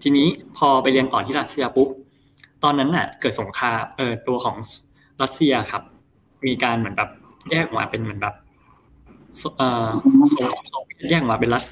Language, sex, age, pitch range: Thai, male, 20-39, 115-145 Hz